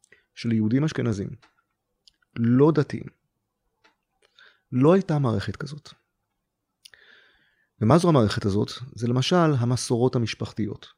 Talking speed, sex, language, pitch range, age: 95 wpm, male, Hebrew, 110-140 Hz, 30-49